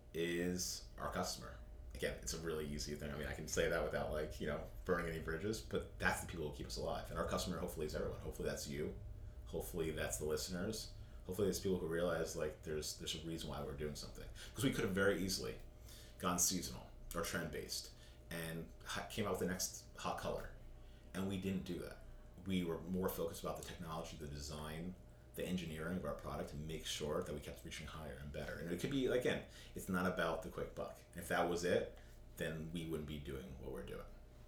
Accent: American